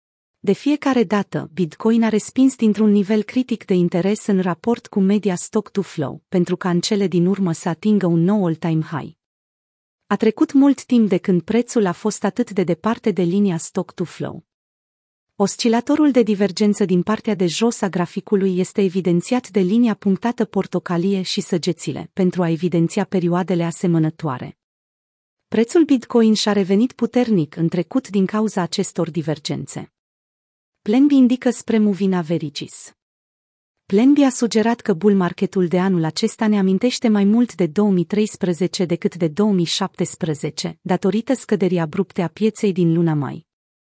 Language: Romanian